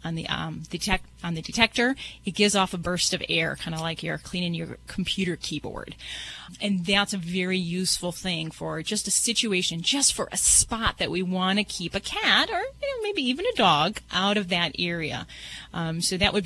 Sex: female